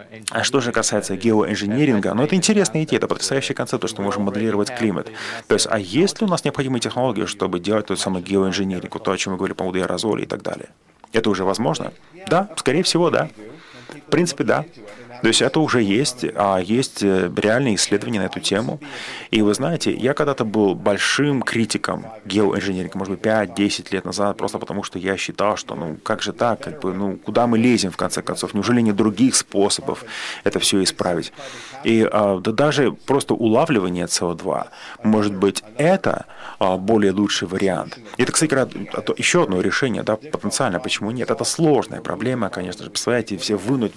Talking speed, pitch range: 180 wpm, 95-115 Hz